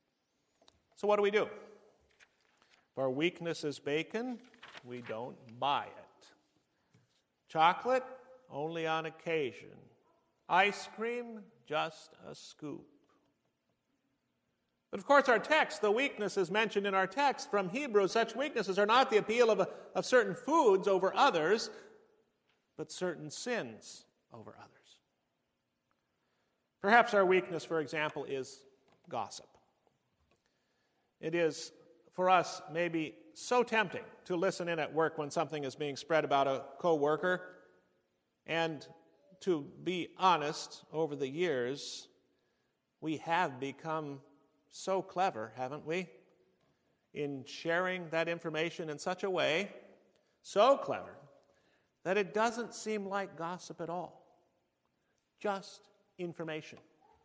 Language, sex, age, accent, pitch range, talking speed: English, male, 50-69, American, 155-210 Hz, 120 wpm